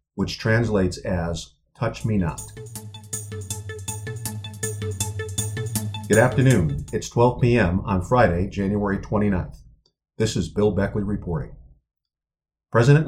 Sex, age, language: male, 50-69, English